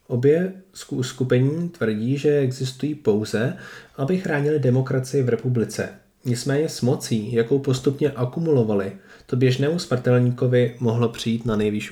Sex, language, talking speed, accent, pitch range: male, Czech, 120 wpm, native, 115-135 Hz